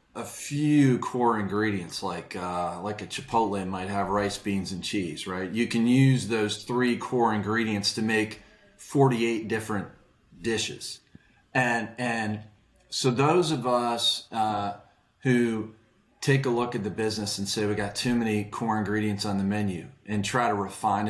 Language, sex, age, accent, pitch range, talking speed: English, male, 40-59, American, 105-135 Hz, 165 wpm